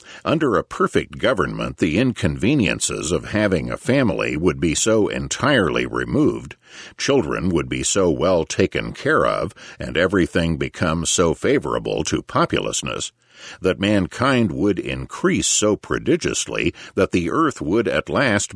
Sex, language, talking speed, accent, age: male, English, 135 wpm, American, 50-69